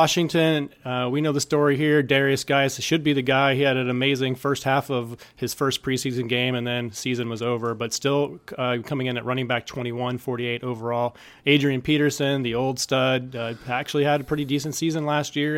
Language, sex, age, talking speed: English, male, 30-49, 205 wpm